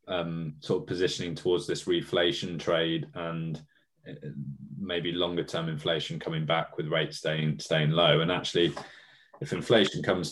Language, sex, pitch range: English, male, 75-90 Hz